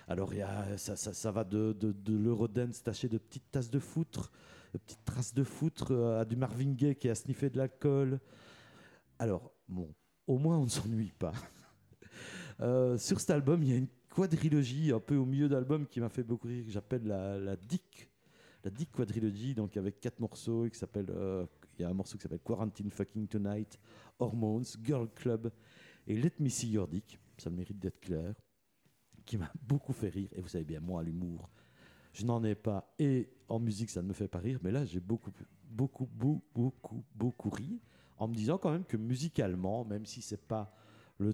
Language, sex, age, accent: French, male, 50-69, French